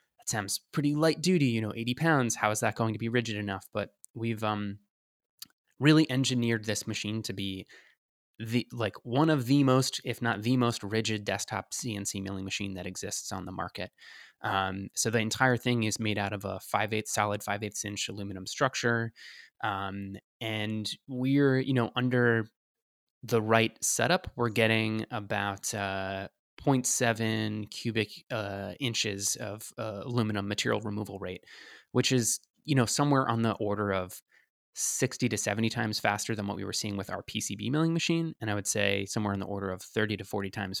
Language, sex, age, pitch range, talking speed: English, male, 20-39, 100-120 Hz, 180 wpm